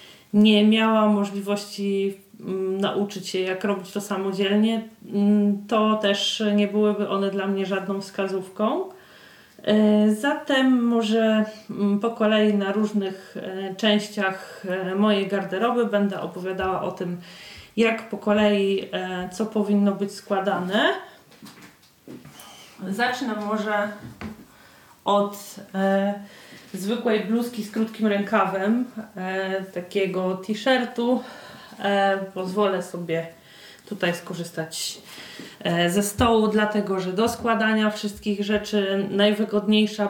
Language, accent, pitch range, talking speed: Polish, native, 190-215 Hz, 90 wpm